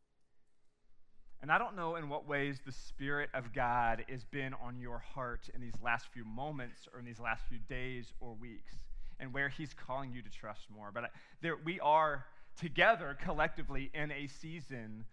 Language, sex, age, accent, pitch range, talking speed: English, male, 30-49, American, 130-160 Hz, 180 wpm